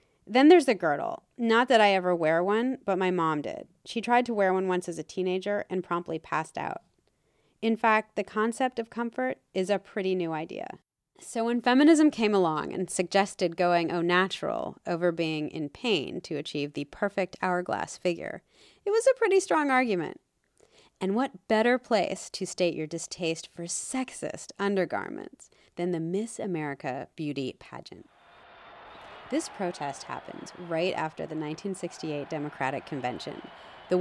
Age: 30-49